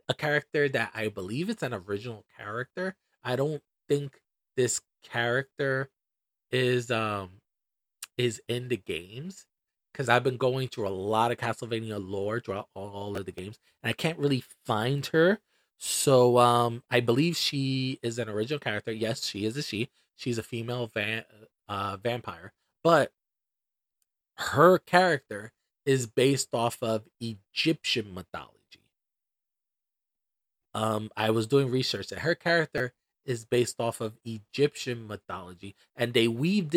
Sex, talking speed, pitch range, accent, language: male, 140 wpm, 110-140 Hz, American, English